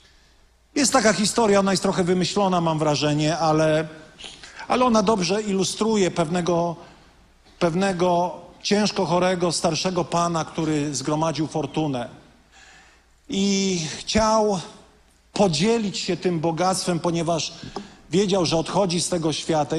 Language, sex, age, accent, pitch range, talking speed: Polish, male, 40-59, native, 155-200 Hz, 110 wpm